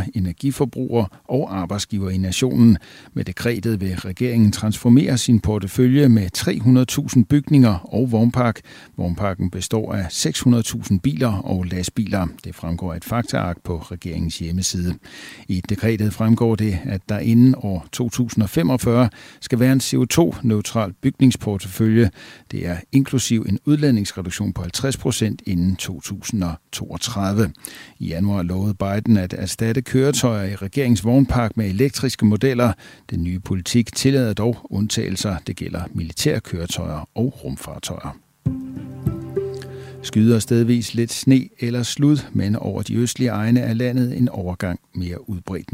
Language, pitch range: Danish, 95-125 Hz